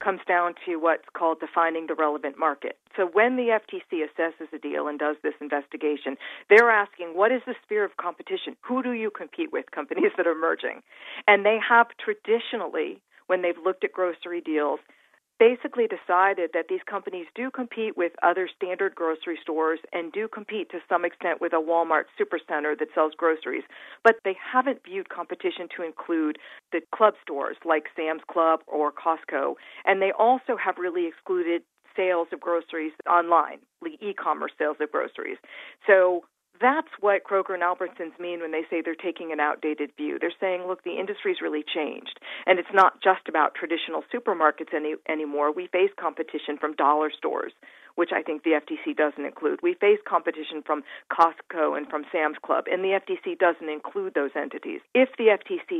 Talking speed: 175 wpm